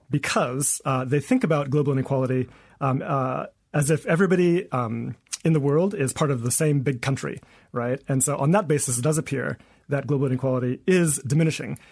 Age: 30-49